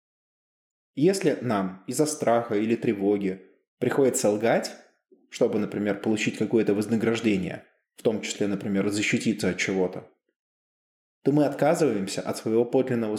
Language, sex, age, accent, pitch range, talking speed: Russian, male, 20-39, native, 105-130 Hz, 120 wpm